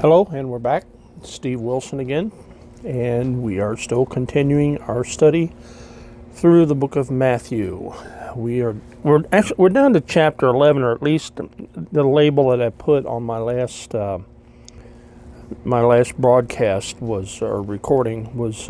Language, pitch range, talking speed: English, 115-140 Hz, 145 wpm